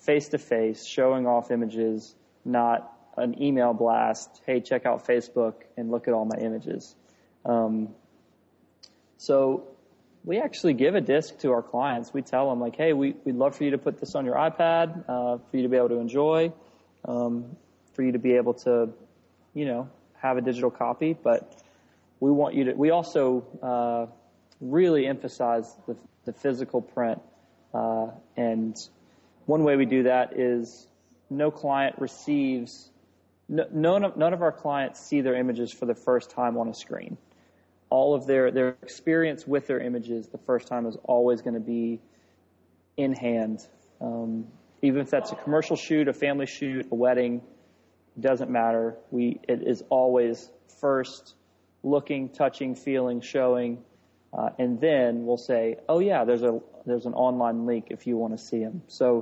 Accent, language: American, English